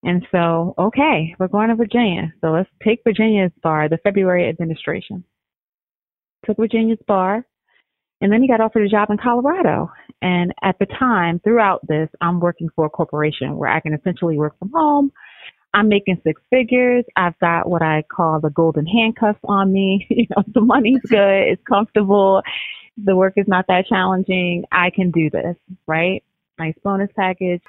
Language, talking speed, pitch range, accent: English, 175 wpm, 170-215 Hz, American